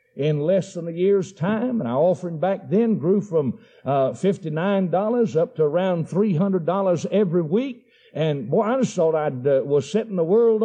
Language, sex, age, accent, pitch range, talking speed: English, male, 60-79, American, 180-255 Hz, 180 wpm